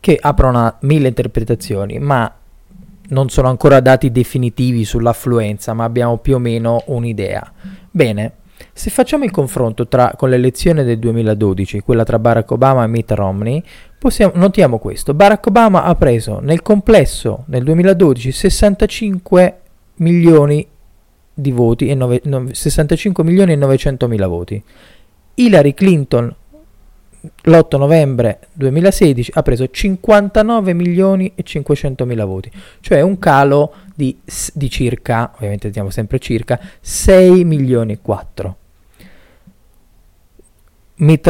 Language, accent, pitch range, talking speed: Italian, native, 115-175 Hz, 125 wpm